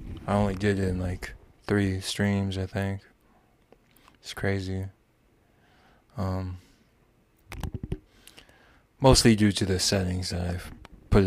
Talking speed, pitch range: 110 wpm, 90-105 Hz